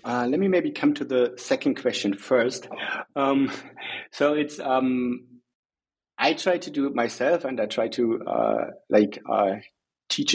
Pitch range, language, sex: 110-130 Hz, English, male